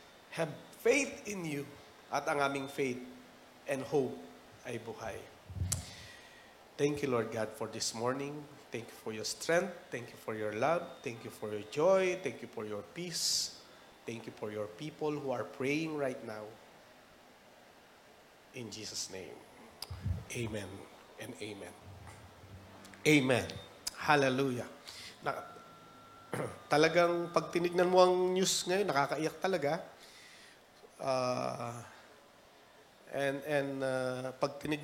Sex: male